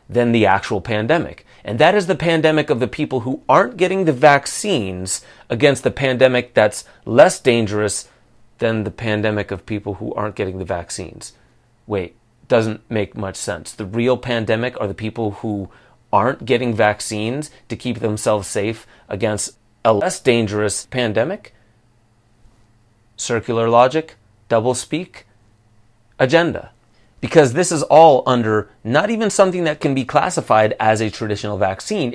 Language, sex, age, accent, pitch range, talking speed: English, male, 30-49, American, 110-135 Hz, 145 wpm